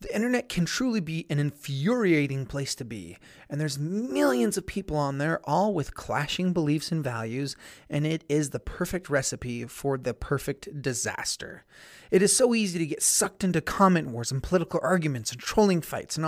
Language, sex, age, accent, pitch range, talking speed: English, male, 30-49, American, 140-190 Hz, 185 wpm